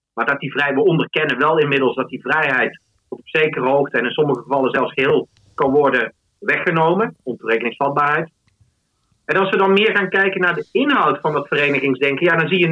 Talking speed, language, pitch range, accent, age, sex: 185 wpm, Dutch, 160-215 Hz, Dutch, 40-59, male